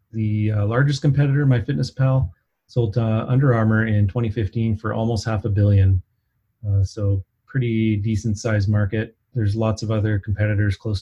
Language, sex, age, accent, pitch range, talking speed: English, male, 30-49, American, 100-120 Hz, 160 wpm